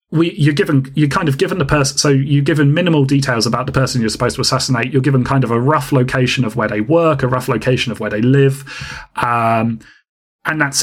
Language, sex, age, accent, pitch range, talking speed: English, male, 30-49, British, 125-150 Hz, 235 wpm